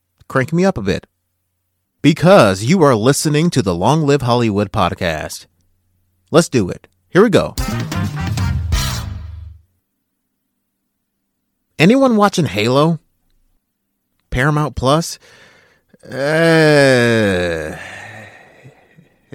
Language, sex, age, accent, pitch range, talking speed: English, male, 30-49, American, 100-150 Hz, 85 wpm